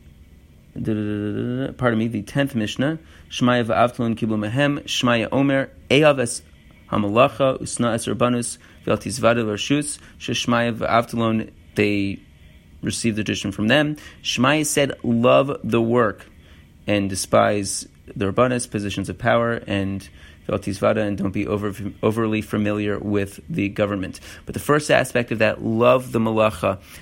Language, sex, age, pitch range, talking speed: English, male, 30-49, 100-125 Hz, 130 wpm